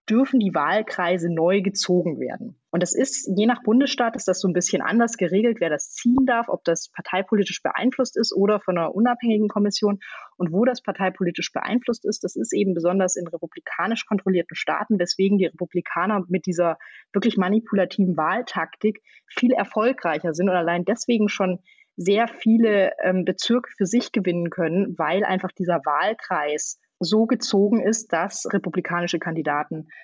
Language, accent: German, German